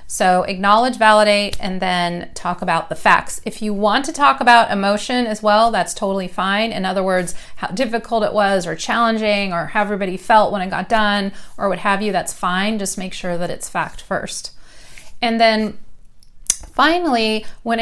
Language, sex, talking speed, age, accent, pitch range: English, female, 185 wpm, 30-49, American, 180-215 Hz